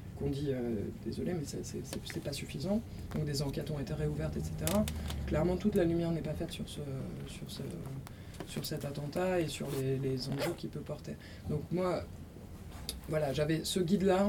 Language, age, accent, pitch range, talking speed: French, 20-39, French, 135-175 Hz, 185 wpm